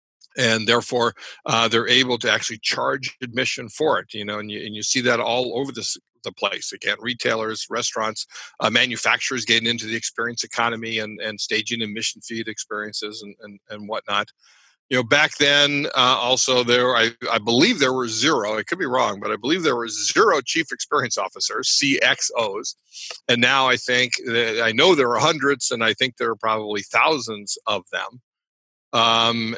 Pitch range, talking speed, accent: 115-130 Hz, 185 wpm, American